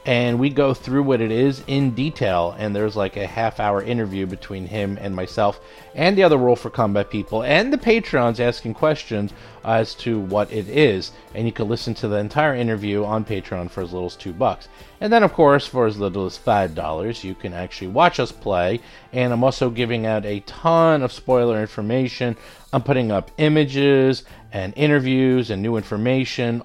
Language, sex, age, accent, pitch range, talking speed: English, male, 40-59, American, 105-130 Hz, 200 wpm